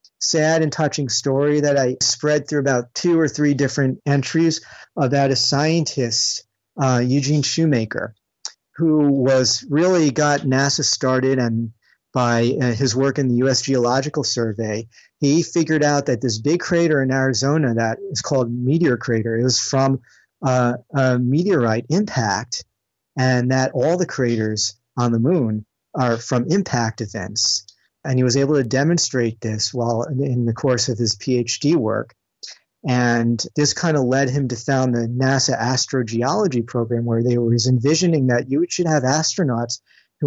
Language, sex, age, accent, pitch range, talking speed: English, male, 40-59, American, 120-145 Hz, 155 wpm